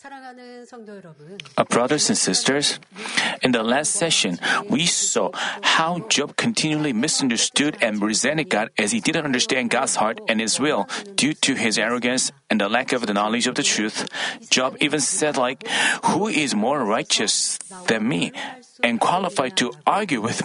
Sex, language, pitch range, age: male, Korean, 140-215 Hz, 40-59